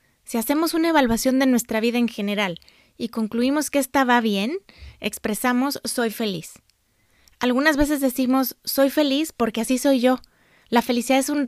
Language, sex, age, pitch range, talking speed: Spanish, female, 20-39, 220-265 Hz, 160 wpm